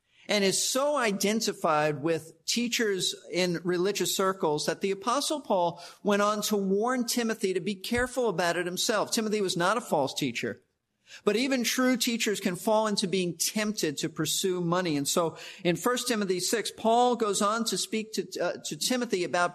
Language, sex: English, male